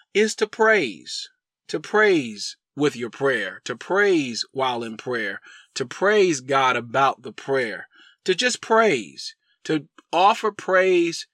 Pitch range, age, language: 155-210 Hz, 40-59, English